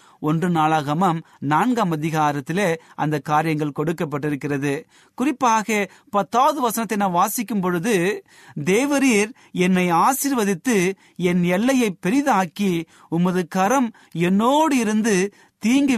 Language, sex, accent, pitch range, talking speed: Tamil, male, native, 150-200 Hz, 50 wpm